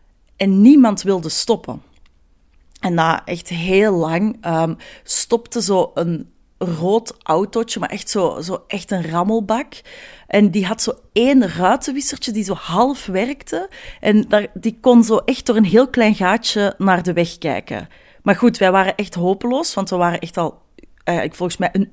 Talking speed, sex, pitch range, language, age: 165 wpm, female, 180-245 Hz, Dutch, 30-49